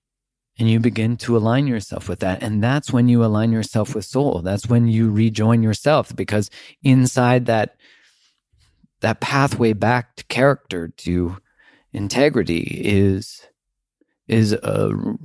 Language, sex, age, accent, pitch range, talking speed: English, male, 40-59, American, 90-115 Hz, 130 wpm